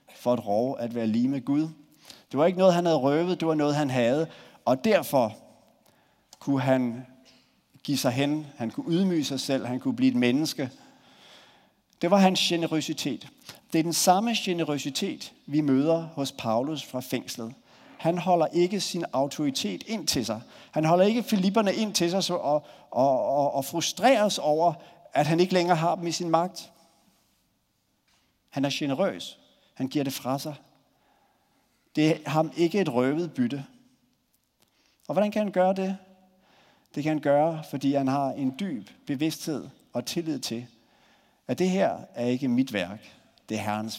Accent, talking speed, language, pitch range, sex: native, 170 wpm, Danish, 130-175 Hz, male